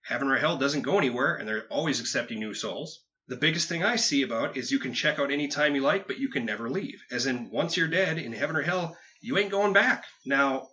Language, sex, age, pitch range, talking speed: English, male, 30-49, 130-180 Hz, 265 wpm